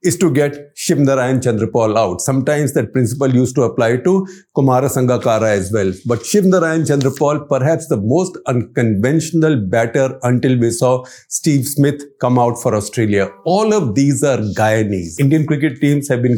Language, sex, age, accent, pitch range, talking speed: English, male, 50-69, Indian, 125-170 Hz, 170 wpm